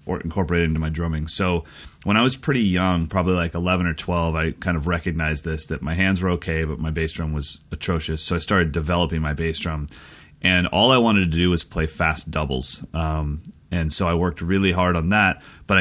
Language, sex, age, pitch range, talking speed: English, male, 30-49, 80-95 Hz, 220 wpm